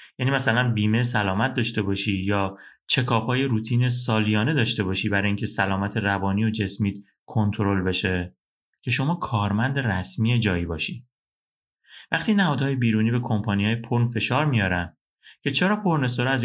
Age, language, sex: 30-49, Persian, male